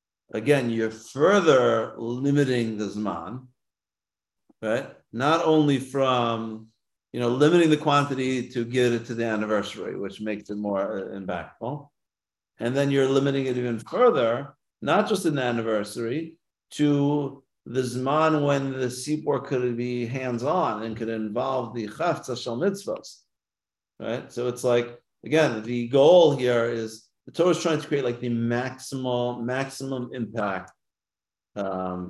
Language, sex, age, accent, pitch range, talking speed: English, male, 50-69, American, 110-135 Hz, 140 wpm